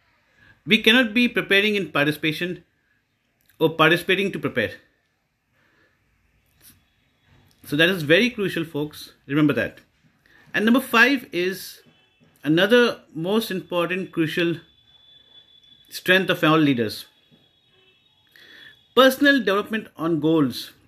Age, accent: 50-69, Indian